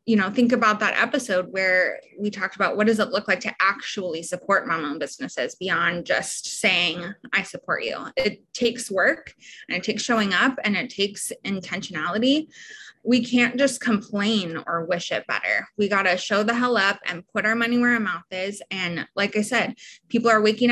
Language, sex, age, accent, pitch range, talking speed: English, female, 20-39, American, 195-240 Hz, 195 wpm